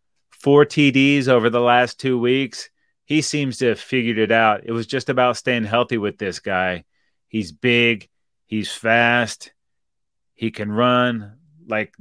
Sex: male